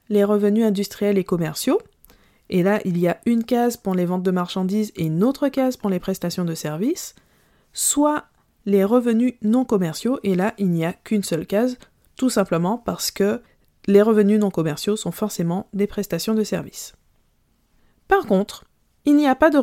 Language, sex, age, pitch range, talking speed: French, female, 20-39, 190-235 Hz, 185 wpm